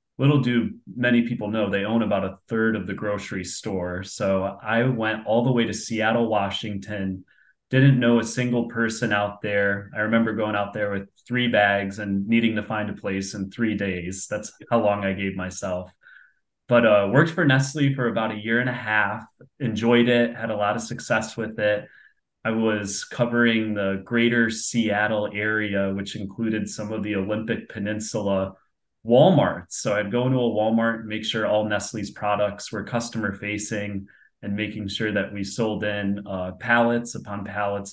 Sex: male